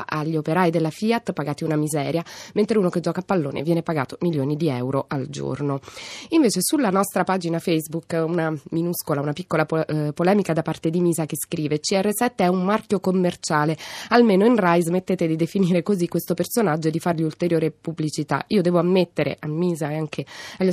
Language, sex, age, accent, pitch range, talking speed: Italian, female, 20-39, native, 155-190 Hz, 185 wpm